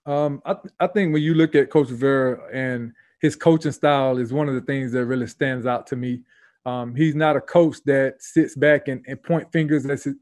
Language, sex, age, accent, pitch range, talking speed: English, male, 20-39, American, 135-155 Hz, 235 wpm